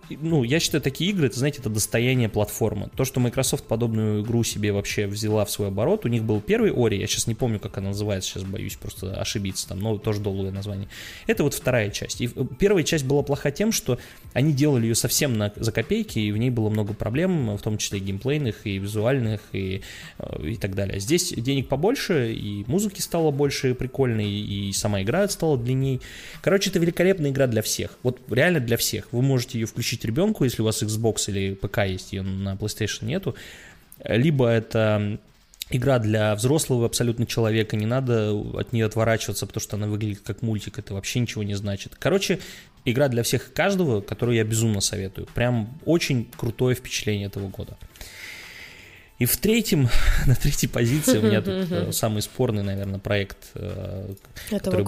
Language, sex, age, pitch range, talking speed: Russian, male, 20-39, 105-135 Hz, 180 wpm